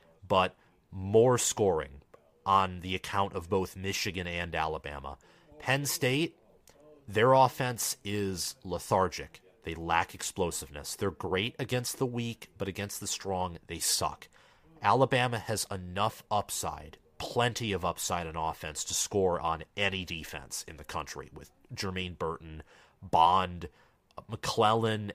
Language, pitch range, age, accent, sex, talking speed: English, 85-110 Hz, 30-49, American, male, 125 wpm